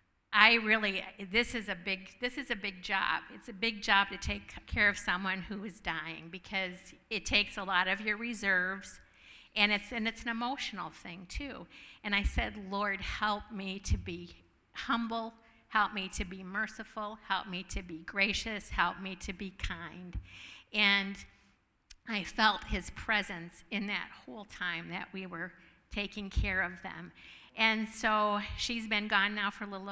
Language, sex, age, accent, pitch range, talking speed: English, female, 50-69, American, 185-215 Hz, 175 wpm